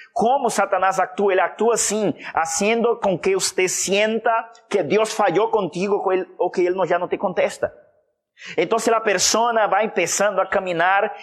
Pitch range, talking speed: 185-230 Hz, 165 wpm